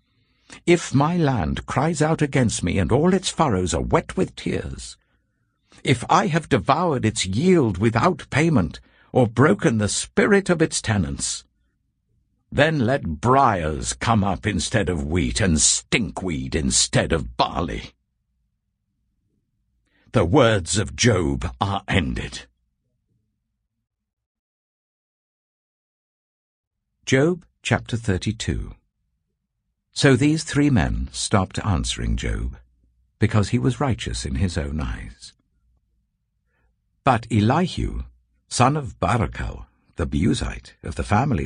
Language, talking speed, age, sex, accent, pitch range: English, 110 wpm, 60-79, male, British, 80-125 Hz